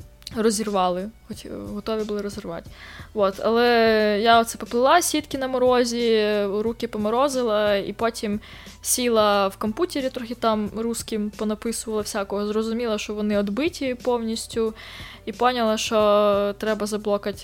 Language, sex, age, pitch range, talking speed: Ukrainian, female, 20-39, 200-235 Hz, 115 wpm